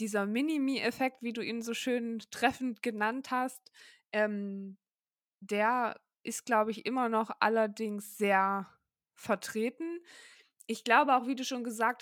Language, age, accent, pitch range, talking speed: German, 20-39, German, 215-250 Hz, 135 wpm